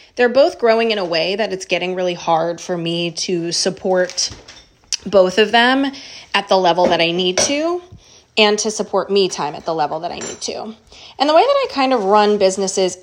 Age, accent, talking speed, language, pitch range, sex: 20-39, American, 210 wpm, English, 180-220 Hz, female